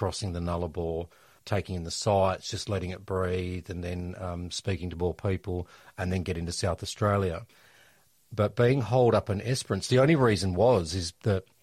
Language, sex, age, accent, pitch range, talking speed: English, male, 40-59, Australian, 90-110 Hz, 185 wpm